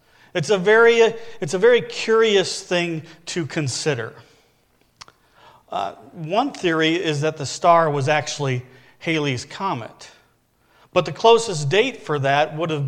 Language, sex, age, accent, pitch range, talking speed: English, male, 40-59, American, 150-195 Hz, 135 wpm